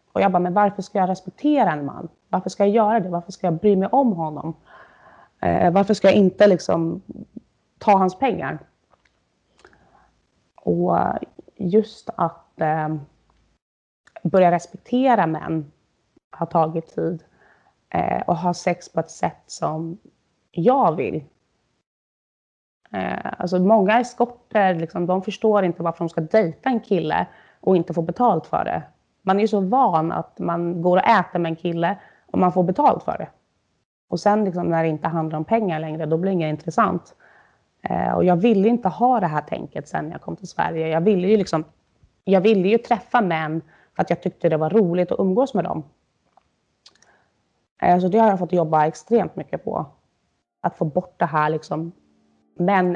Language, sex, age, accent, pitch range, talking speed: Swedish, female, 30-49, native, 165-215 Hz, 175 wpm